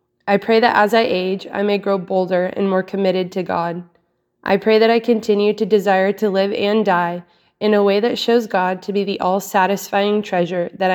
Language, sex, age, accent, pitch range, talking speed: English, female, 20-39, American, 180-210 Hz, 210 wpm